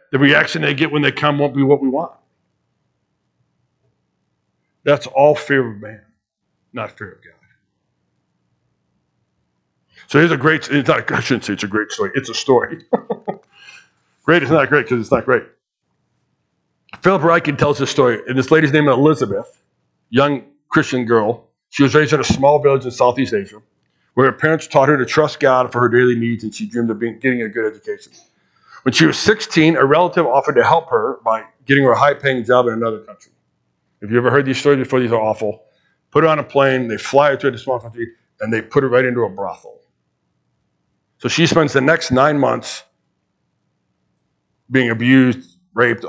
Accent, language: American, English